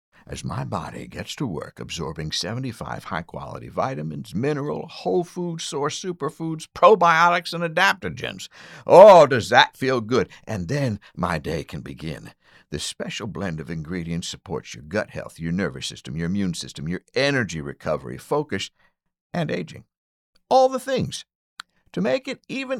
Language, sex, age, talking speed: English, male, 60-79, 150 wpm